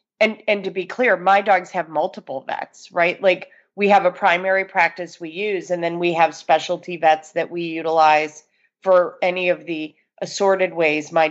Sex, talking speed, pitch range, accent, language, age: female, 185 wpm, 165-200 Hz, American, English, 30-49